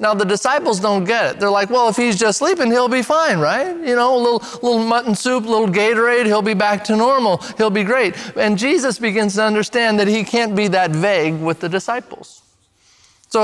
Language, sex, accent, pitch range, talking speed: English, male, American, 165-225 Hz, 225 wpm